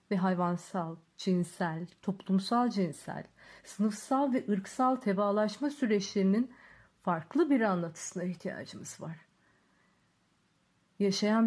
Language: Turkish